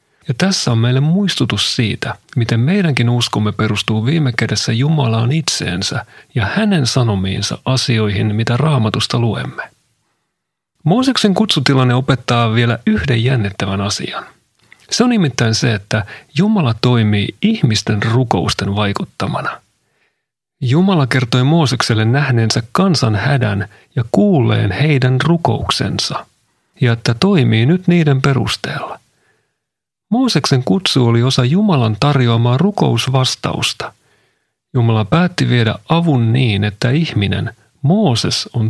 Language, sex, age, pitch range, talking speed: Finnish, male, 40-59, 115-150 Hz, 110 wpm